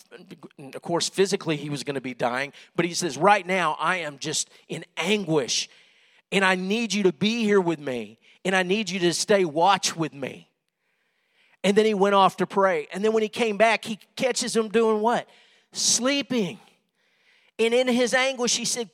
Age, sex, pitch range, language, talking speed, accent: 50-69, male, 185-240 Hz, English, 195 wpm, American